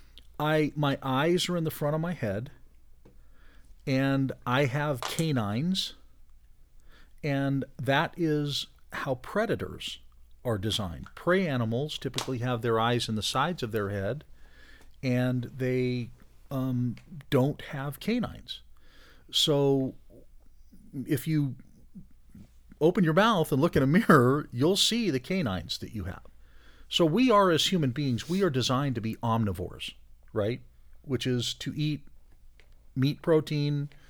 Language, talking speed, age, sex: English, 130 wpm, 40-59, male